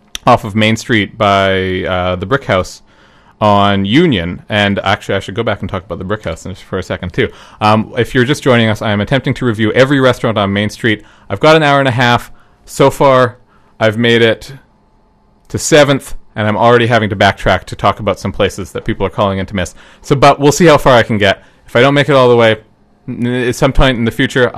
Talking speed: 230 wpm